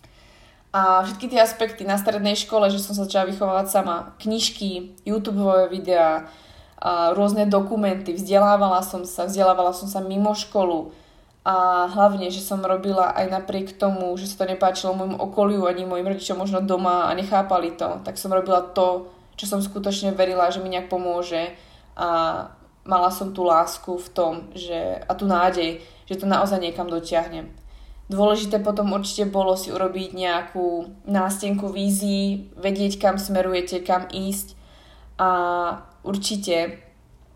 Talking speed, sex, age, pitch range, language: 150 wpm, female, 20-39, 175-195 Hz, Slovak